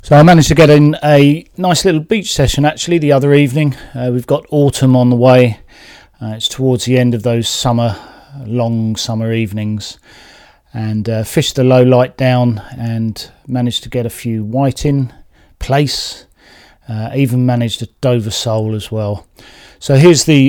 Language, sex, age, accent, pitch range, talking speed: English, male, 40-59, British, 115-135 Hz, 175 wpm